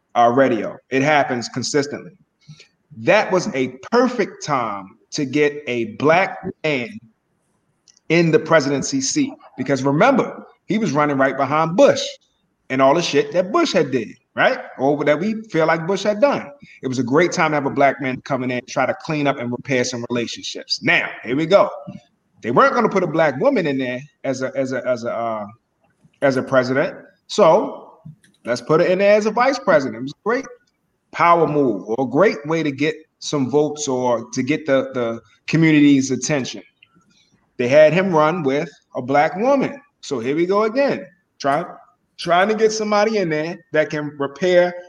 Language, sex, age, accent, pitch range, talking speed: English, male, 30-49, American, 135-190 Hz, 190 wpm